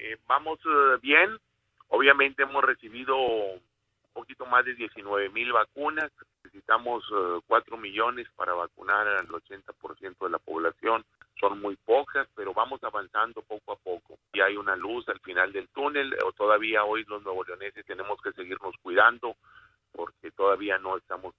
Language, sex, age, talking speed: Spanish, male, 40-59, 160 wpm